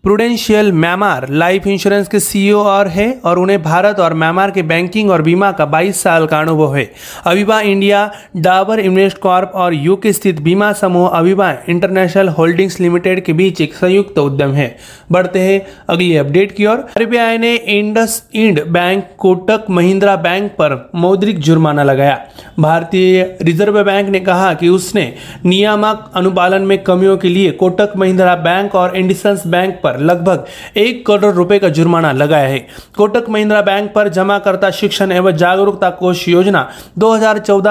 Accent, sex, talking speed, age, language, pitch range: native, male, 160 wpm, 30-49, Marathi, 175-200 Hz